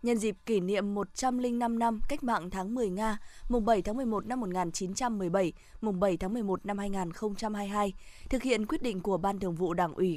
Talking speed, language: 195 wpm, Vietnamese